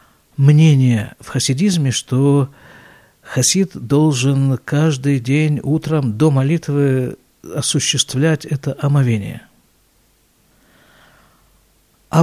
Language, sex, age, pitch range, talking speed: Russian, male, 50-69, 130-180 Hz, 75 wpm